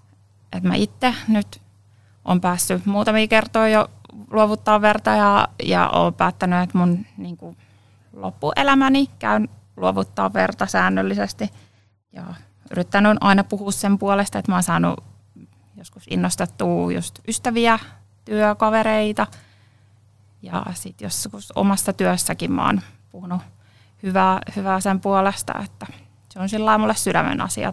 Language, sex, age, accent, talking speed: Finnish, female, 30-49, native, 125 wpm